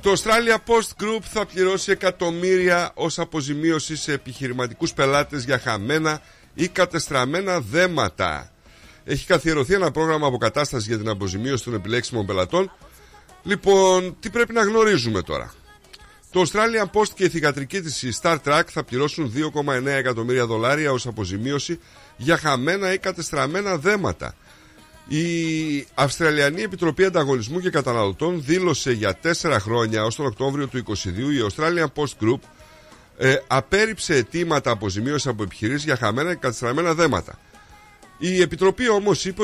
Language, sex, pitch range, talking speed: Greek, male, 125-180 Hz, 135 wpm